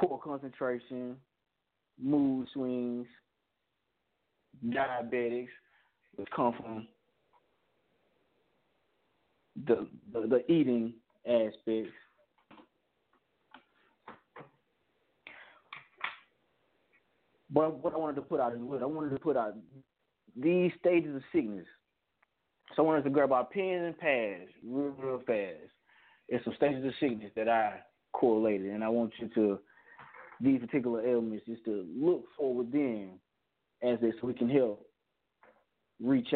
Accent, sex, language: American, male, English